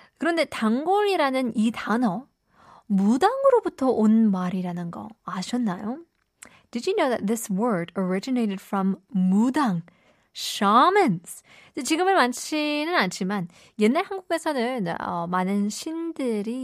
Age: 20-39